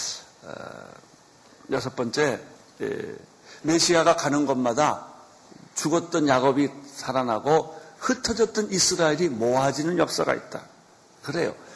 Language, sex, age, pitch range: Korean, male, 50-69, 140-215 Hz